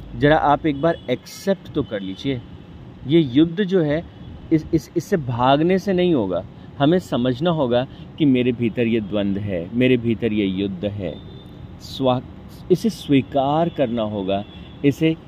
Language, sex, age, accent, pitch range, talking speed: Hindi, male, 50-69, native, 125-170 Hz, 155 wpm